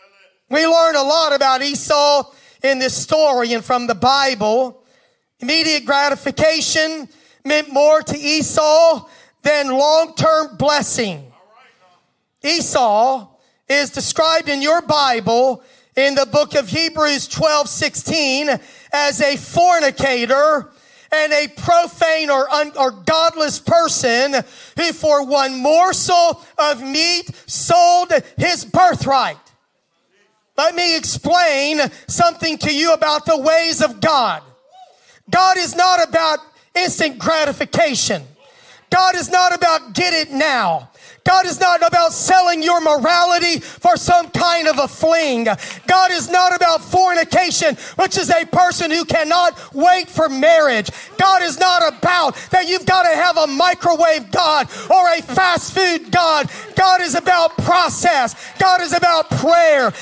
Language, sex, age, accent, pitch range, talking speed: English, male, 40-59, American, 285-350 Hz, 130 wpm